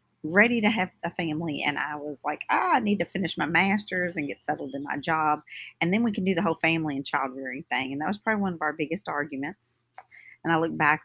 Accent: American